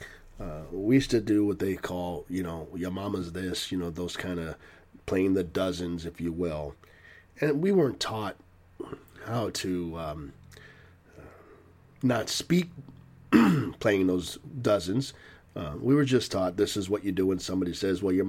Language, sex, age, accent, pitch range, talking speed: English, male, 40-59, American, 90-135 Hz, 165 wpm